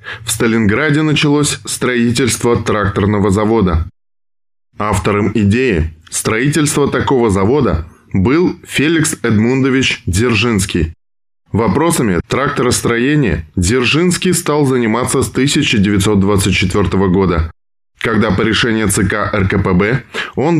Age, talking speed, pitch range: 10-29, 85 wpm, 100-130 Hz